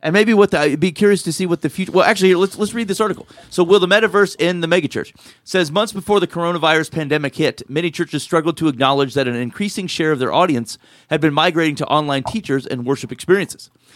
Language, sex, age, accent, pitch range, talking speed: English, male, 30-49, American, 130-175 Hz, 240 wpm